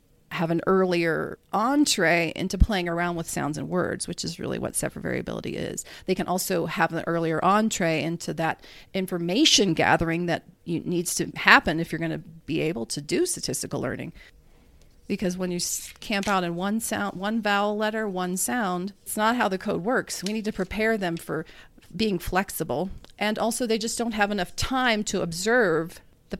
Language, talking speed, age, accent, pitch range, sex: English, 185 wpm, 40-59, American, 170-210 Hz, female